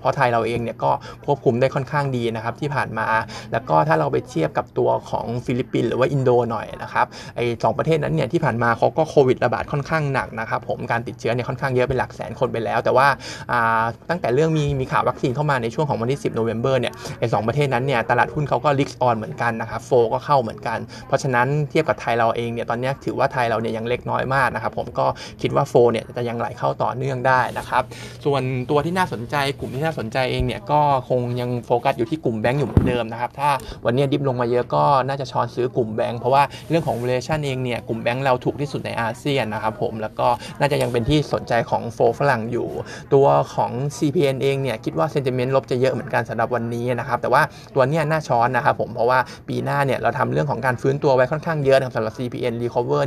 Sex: male